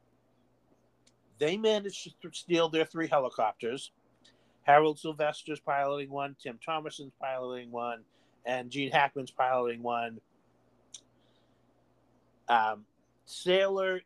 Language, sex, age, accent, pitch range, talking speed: English, male, 50-69, American, 125-155 Hz, 95 wpm